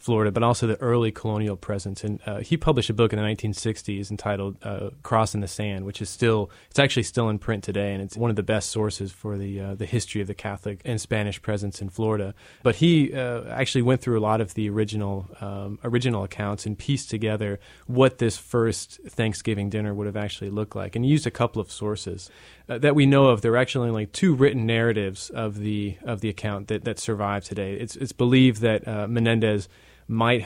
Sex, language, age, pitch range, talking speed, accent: male, English, 20-39, 100-115 Hz, 220 wpm, American